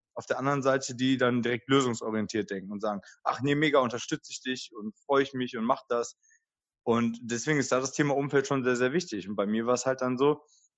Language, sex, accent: German, male, German